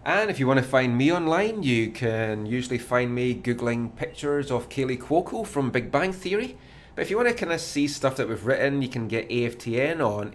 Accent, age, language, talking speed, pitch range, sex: British, 30-49, English, 225 wpm, 120-155 Hz, male